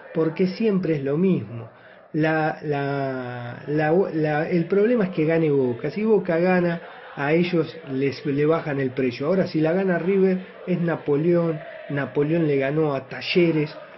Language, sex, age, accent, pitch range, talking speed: Spanish, male, 30-49, Argentinian, 150-190 Hz, 160 wpm